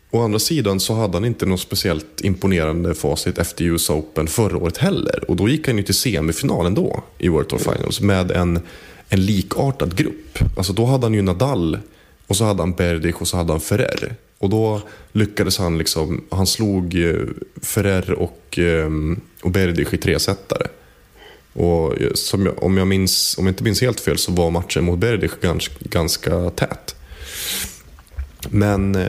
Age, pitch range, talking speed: 20-39, 85-105 Hz, 175 wpm